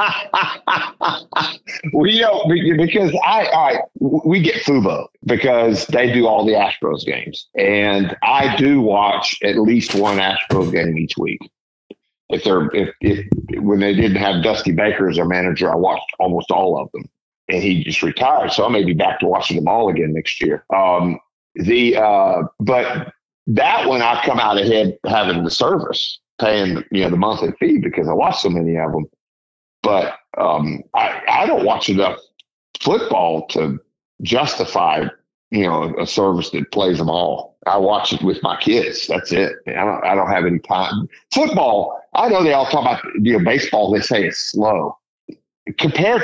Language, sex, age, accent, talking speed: English, male, 50-69, American, 175 wpm